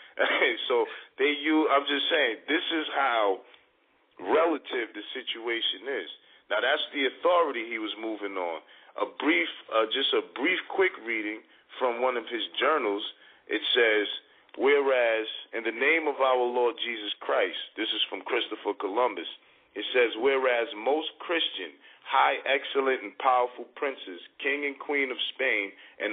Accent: American